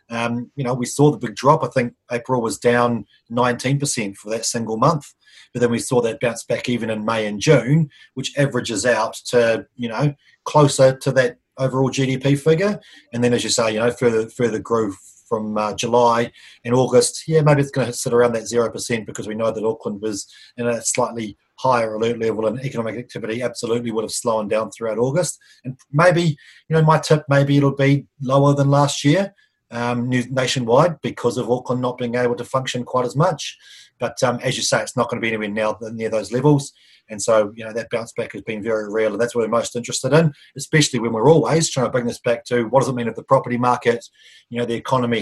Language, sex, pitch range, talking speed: English, male, 115-135 Hz, 225 wpm